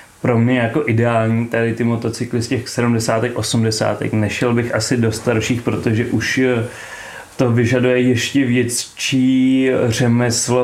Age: 30-49